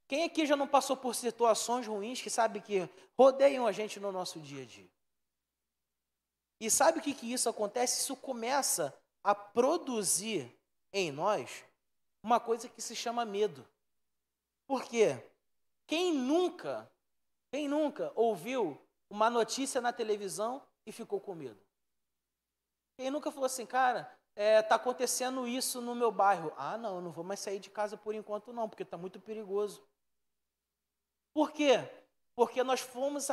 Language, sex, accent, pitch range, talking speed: Portuguese, male, Brazilian, 200-265 Hz, 155 wpm